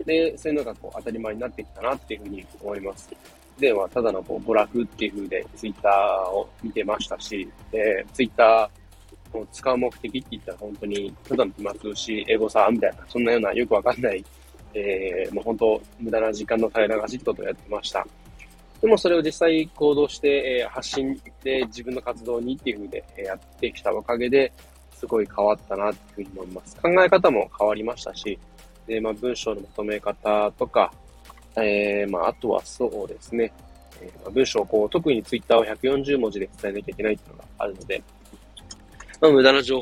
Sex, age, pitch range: male, 20-39, 105-150 Hz